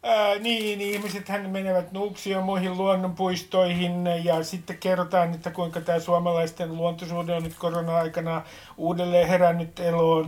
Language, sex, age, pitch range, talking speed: Finnish, male, 50-69, 160-200 Hz, 130 wpm